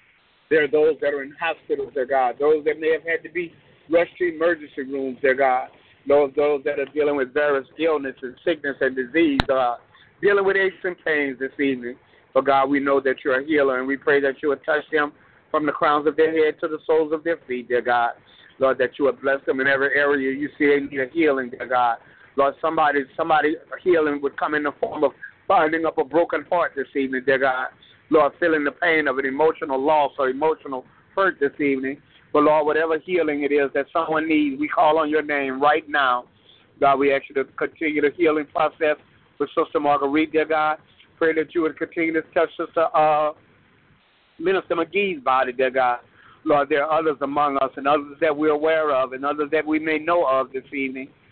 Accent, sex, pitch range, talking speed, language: American, male, 135-160 Hz, 215 wpm, English